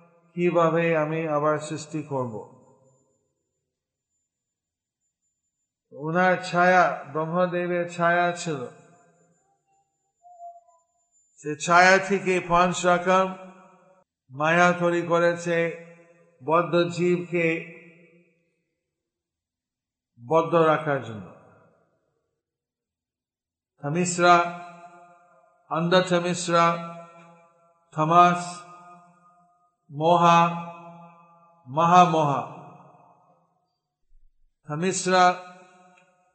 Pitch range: 155-175 Hz